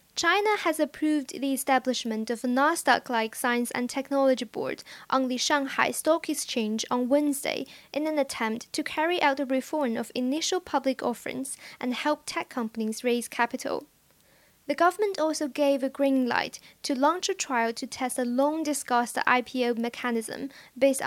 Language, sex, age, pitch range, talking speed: English, female, 10-29, 245-290 Hz, 160 wpm